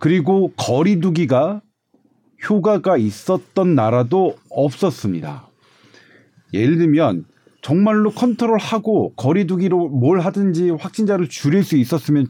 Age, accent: 40-59, native